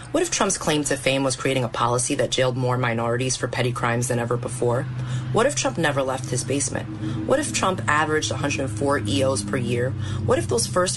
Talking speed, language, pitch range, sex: 215 wpm, English, 125-145 Hz, female